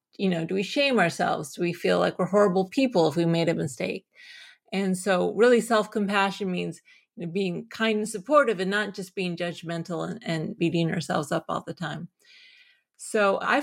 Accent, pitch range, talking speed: American, 180-240 Hz, 185 wpm